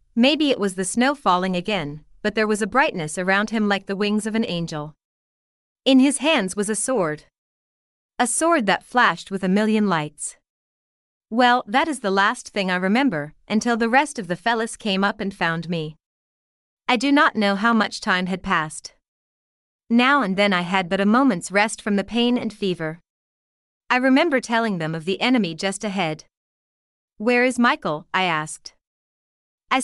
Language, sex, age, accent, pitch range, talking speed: English, female, 30-49, American, 180-245 Hz, 185 wpm